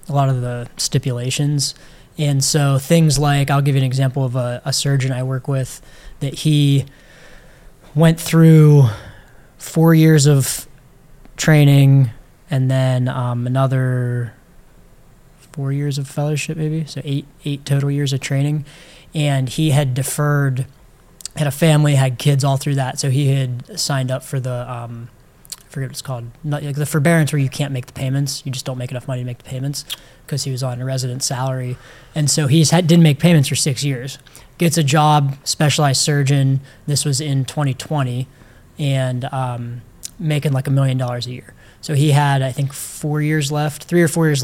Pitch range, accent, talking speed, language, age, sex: 130-150 Hz, American, 180 wpm, English, 20-39, male